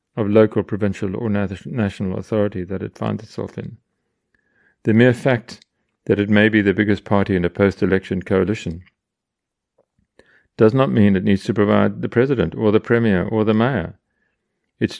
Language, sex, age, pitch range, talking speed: English, male, 40-59, 95-115 Hz, 165 wpm